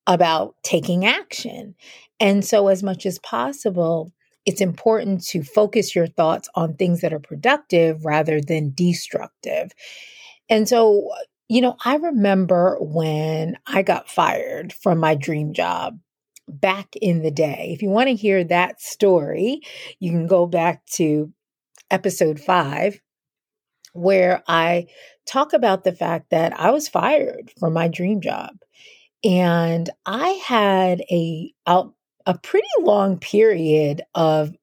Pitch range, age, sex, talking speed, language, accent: 165-210 Hz, 40-59, female, 135 wpm, English, American